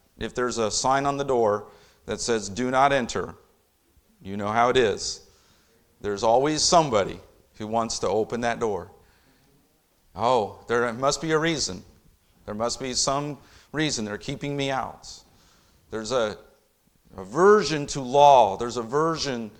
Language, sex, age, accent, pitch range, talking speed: English, male, 50-69, American, 125-170 Hz, 145 wpm